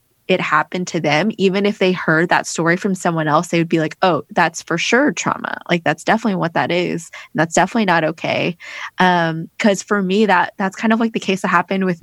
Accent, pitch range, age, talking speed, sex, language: American, 165-190 Hz, 20-39, 235 wpm, female, English